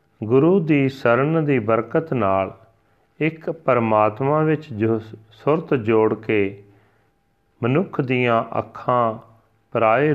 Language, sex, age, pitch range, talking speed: Punjabi, male, 40-59, 110-130 Hz, 100 wpm